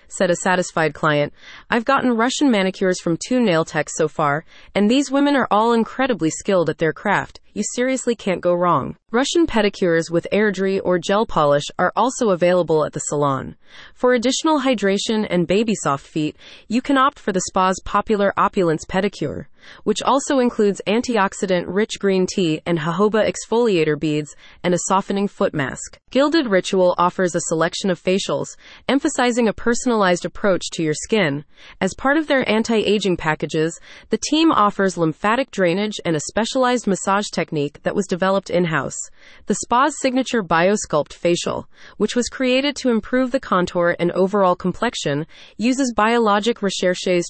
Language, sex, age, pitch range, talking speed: English, female, 30-49, 175-235 Hz, 160 wpm